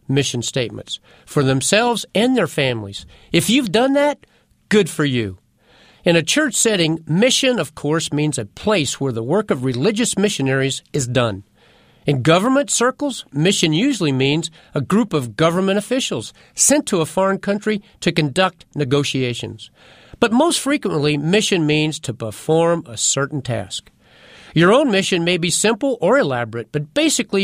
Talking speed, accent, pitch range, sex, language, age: 155 wpm, American, 135-200 Hz, male, English, 50-69